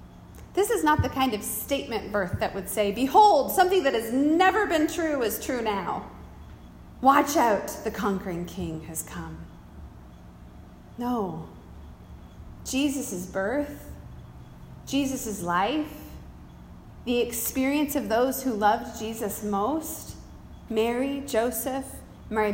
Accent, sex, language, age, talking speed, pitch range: American, female, English, 30-49, 115 wpm, 185-255 Hz